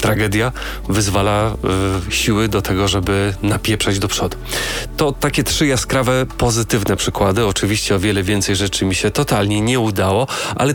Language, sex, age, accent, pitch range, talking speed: Polish, male, 30-49, native, 100-115 Hz, 150 wpm